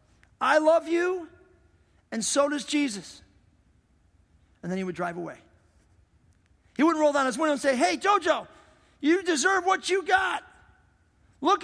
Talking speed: 150 wpm